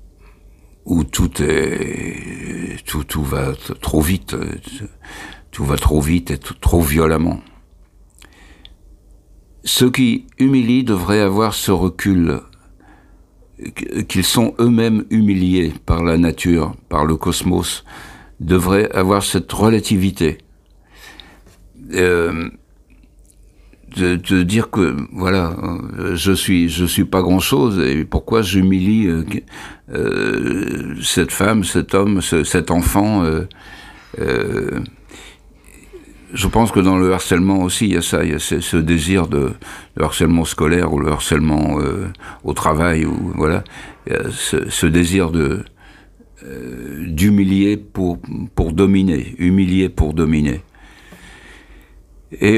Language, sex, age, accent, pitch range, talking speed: French, male, 60-79, French, 80-95 Hz, 125 wpm